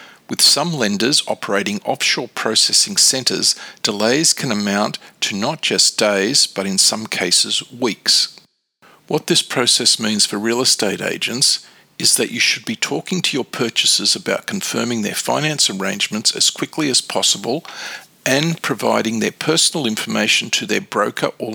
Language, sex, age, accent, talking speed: English, male, 50-69, Australian, 150 wpm